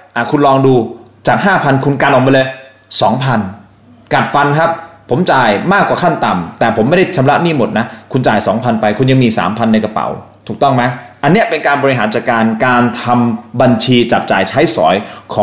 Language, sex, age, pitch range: Thai, male, 20-39, 115-155 Hz